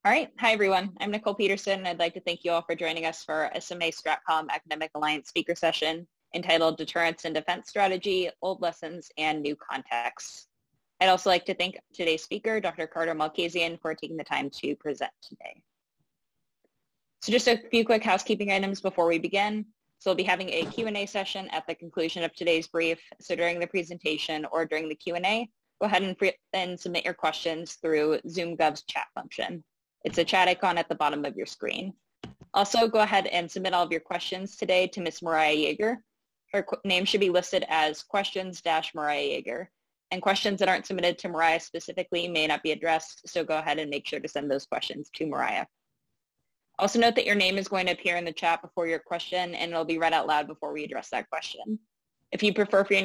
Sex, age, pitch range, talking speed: female, 10-29, 160-195 Hz, 205 wpm